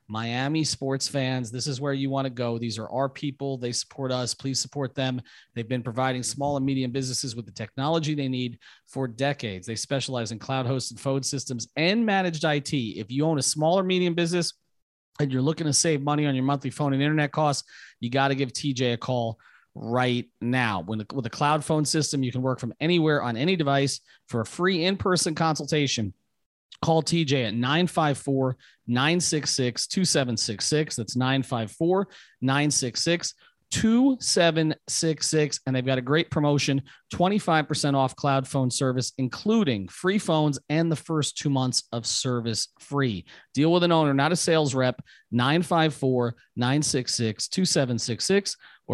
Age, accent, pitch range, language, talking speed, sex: 30-49, American, 125-155 Hz, English, 155 wpm, male